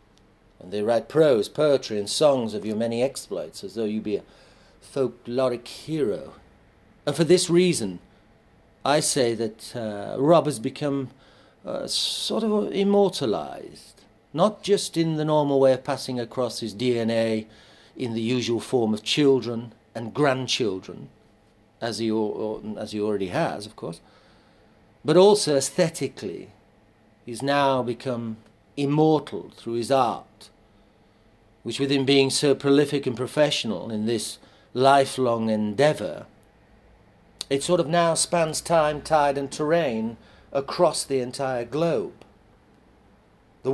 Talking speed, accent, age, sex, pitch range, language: 130 wpm, British, 50-69, male, 110-140 Hz, English